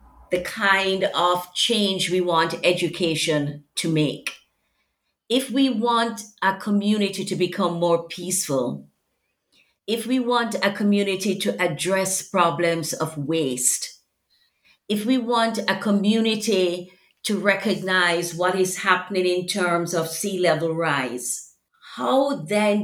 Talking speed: 120 wpm